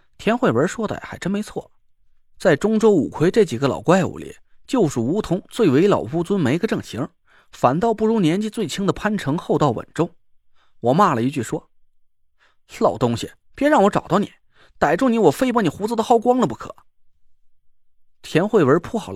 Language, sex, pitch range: Chinese, male, 180-255 Hz